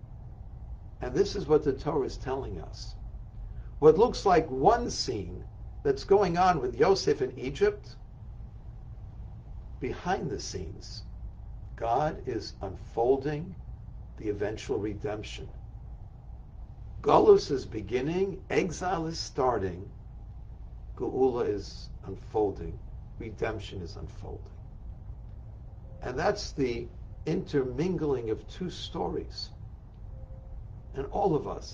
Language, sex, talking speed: English, male, 100 wpm